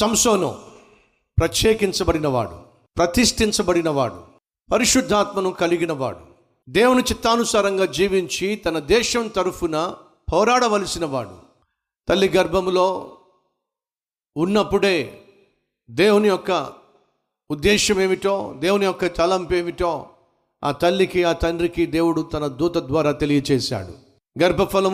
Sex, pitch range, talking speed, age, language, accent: male, 155-185 Hz, 65 wpm, 50-69, Telugu, native